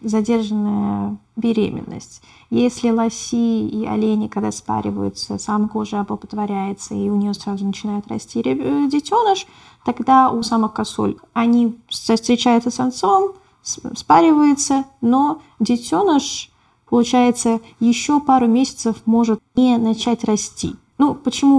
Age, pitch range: 20-39, 215-255 Hz